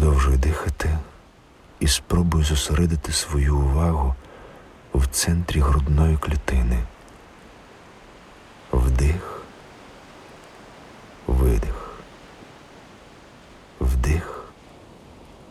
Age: 50-69